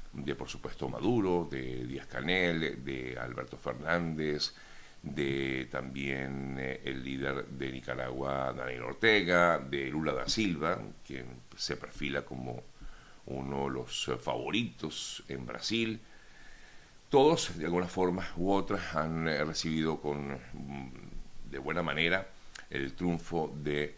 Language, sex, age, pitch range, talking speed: Spanish, male, 60-79, 70-85 Hz, 120 wpm